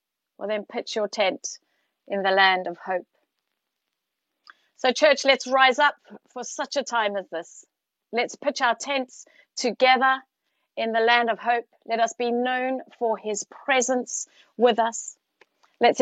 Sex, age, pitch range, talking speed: female, 40-59, 205-250 Hz, 155 wpm